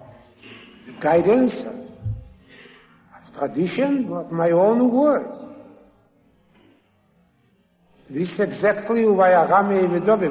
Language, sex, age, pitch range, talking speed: English, male, 60-79, 155-245 Hz, 75 wpm